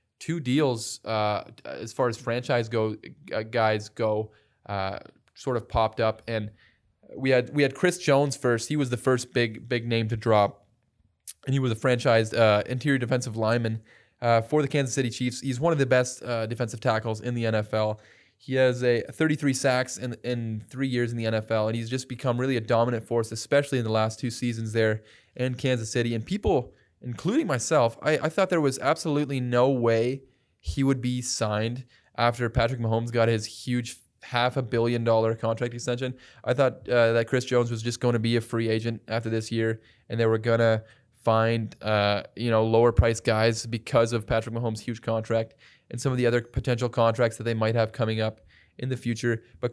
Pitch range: 110-130 Hz